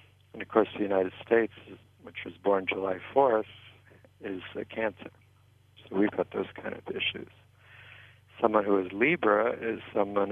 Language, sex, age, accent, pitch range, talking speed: English, male, 60-79, American, 100-110 Hz, 155 wpm